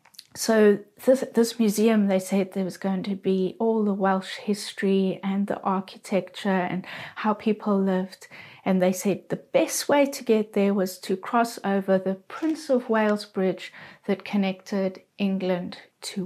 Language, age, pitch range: English, 30-49, 190-225 Hz